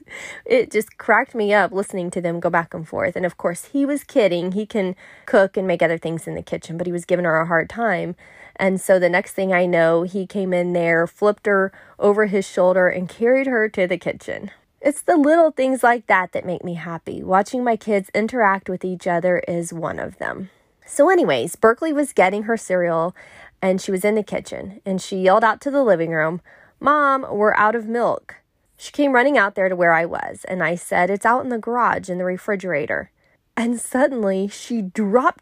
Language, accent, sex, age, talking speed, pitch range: English, American, female, 20-39, 220 wpm, 180-235 Hz